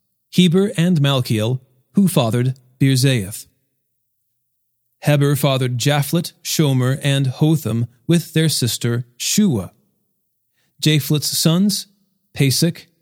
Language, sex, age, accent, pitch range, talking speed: English, male, 40-59, American, 120-155 Hz, 90 wpm